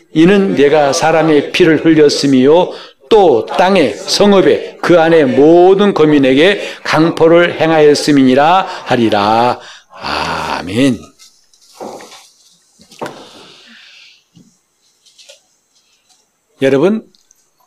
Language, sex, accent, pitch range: Korean, male, native, 130-175 Hz